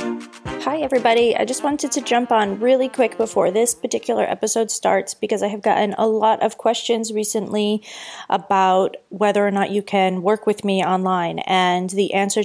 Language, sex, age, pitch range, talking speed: English, female, 30-49, 190-220 Hz, 180 wpm